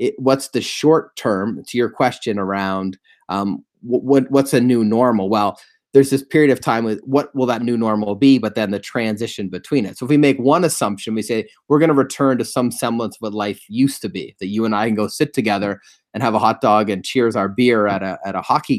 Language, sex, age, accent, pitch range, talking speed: English, male, 30-49, American, 105-130 Hz, 245 wpm